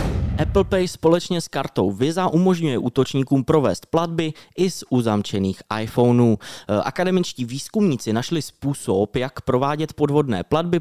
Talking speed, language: 120 wpm, Czech